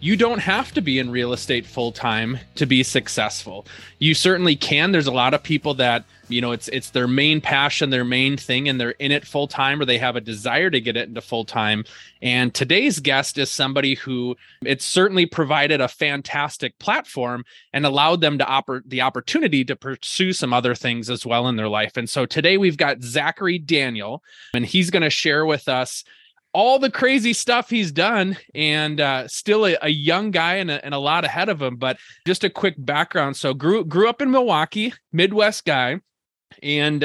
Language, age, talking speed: English, 20-39, 205 wpm